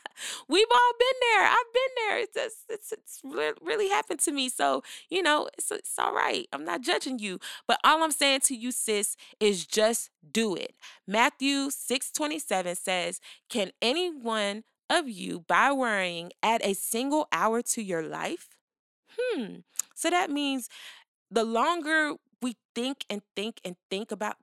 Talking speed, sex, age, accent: 170 wpm, female, 20-39, American